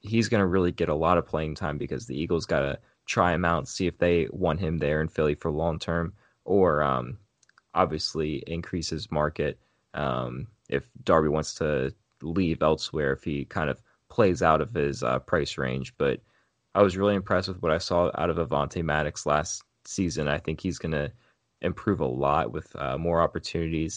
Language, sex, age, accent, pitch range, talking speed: English, male, 20-39, American, 75-90 Hz, 205 wpm